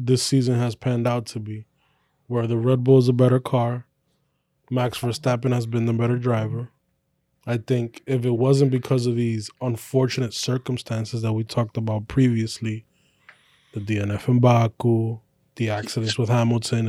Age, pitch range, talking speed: 20-39, 110-135 Hz, 160 wpm